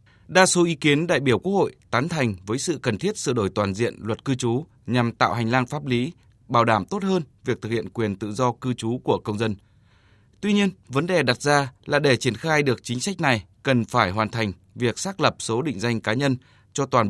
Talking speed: 245 wpm